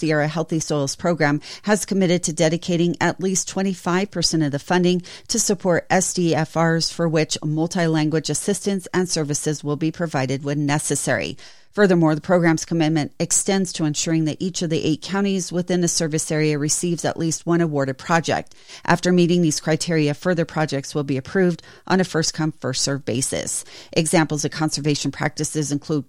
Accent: American